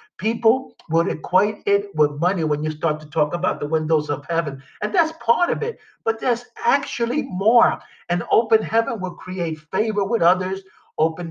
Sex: male